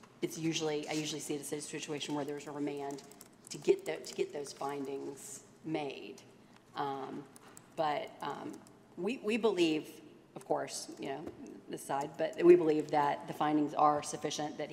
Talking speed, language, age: 170 wpm, English, 40-59